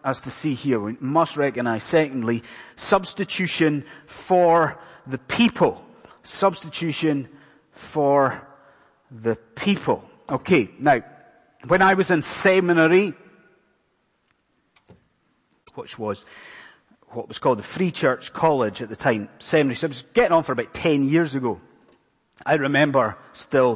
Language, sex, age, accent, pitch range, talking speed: English, male, 30-49, British, 120-160 Hz, 125 wpm